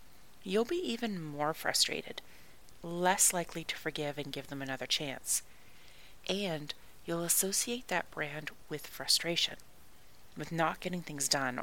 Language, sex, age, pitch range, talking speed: English, female, 30-49, 160-210 Hz, 135 wpm